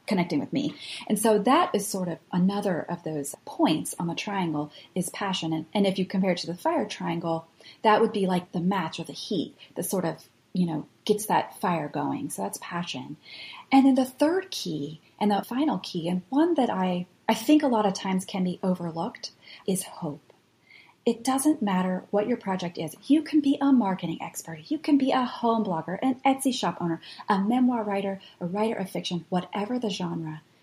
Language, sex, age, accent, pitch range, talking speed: English, female, 30-49, American, 175-240 Hz, 210 wpm